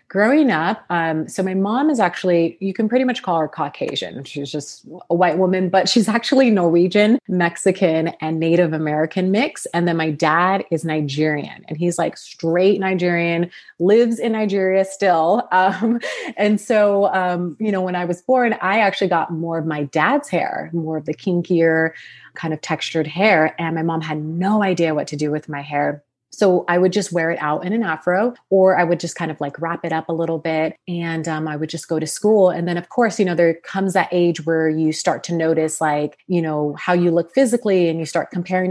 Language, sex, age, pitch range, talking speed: English, female, 30-49, 160-195 Hz, 215 wpm